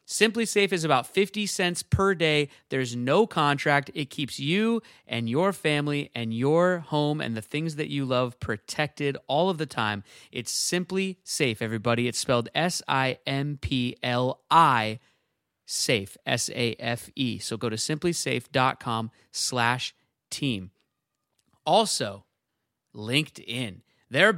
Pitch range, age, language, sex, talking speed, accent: 125-170 Hz, 30-49, English, male, 115 wpm, American